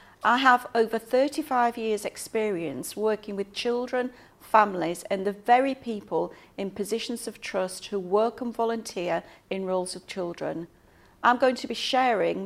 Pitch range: 195-245 Hz